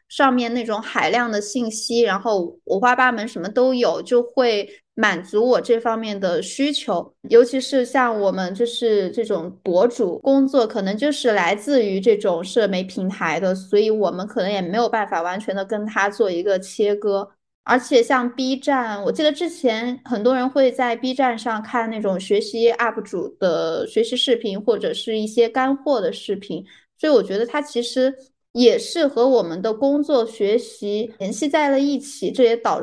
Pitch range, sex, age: 205-260 Hz, female, 10-29